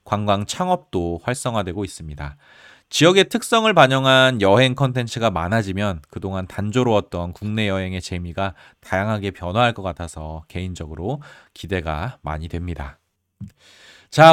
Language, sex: Korean, male